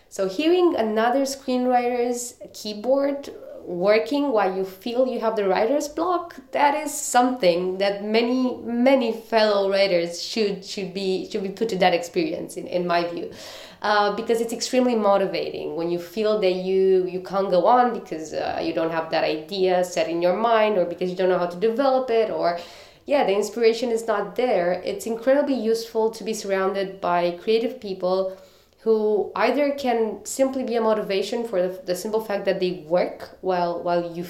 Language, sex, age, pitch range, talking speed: English, female, 20-39, 185-230 Hz, 180 wpm